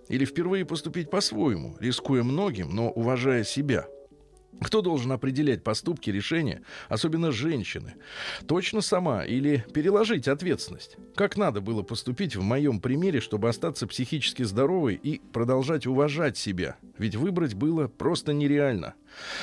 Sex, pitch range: male, 115-150 Hz